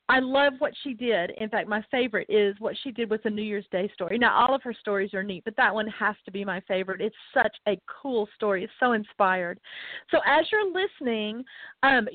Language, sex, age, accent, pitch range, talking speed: English, female, 40-59, American, 210-265 Hz, 230 wpm